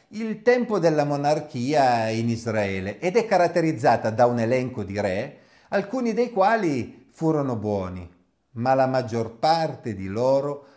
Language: Italian